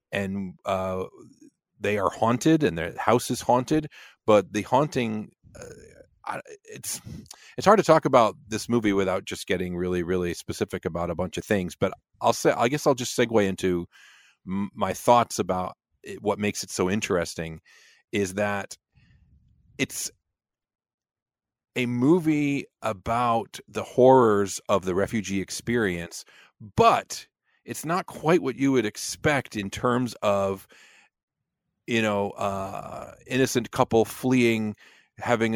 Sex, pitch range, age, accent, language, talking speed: male, 95-125 Hz, 40-59, American, English, 140 wpm